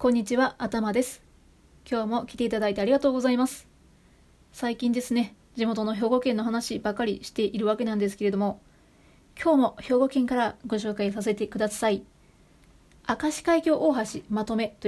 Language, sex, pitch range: Japanese, female, 210-265 Hz